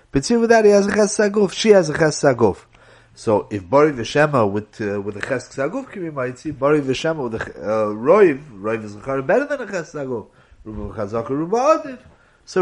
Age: 30-49